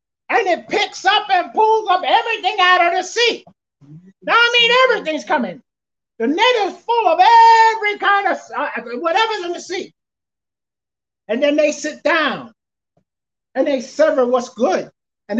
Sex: male